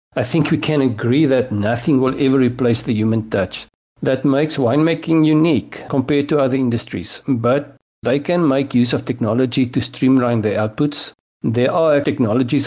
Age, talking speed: 50-69, 165 wpm